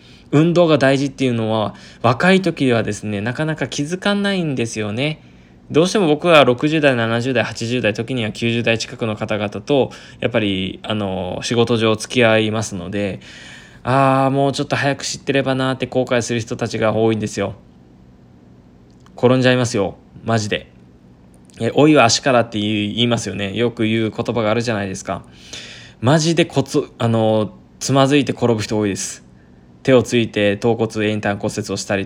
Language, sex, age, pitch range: Japanese, male, 20-39, 100-125 Hz